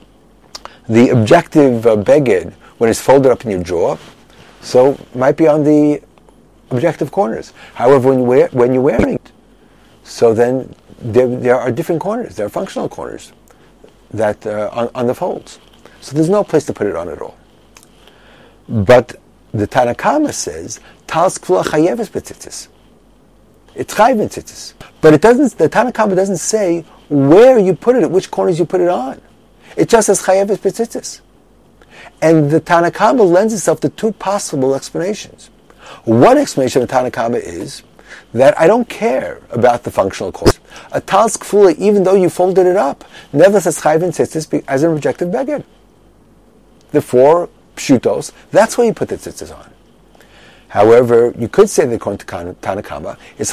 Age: 50-69